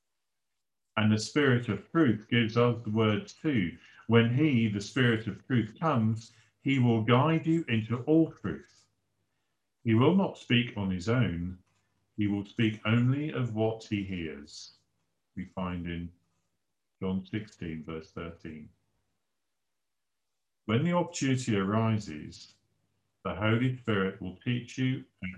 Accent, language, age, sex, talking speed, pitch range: British, English, 50-69, male, 135 wpm, 95-115 Hz